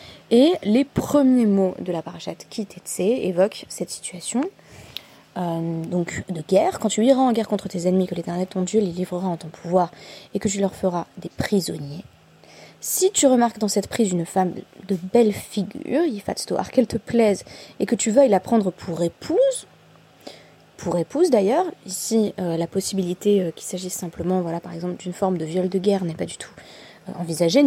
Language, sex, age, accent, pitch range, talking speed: French, female, 20-39, French, 180-225 Hz, 180 wpm